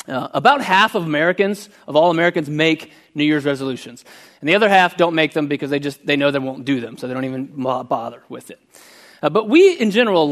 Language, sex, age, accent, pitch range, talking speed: English, male, 30-49, American, 140-185 Hz, 235 wpm